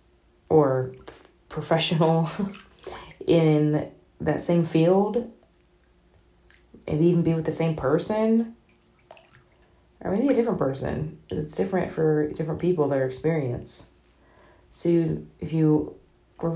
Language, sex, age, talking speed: English, female, 20-39, 110 wpm